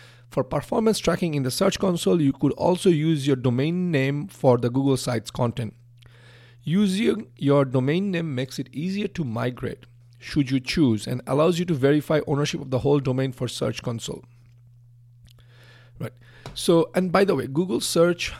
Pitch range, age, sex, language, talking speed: 120-145 Hz, 40-59, male, English, 170 wpm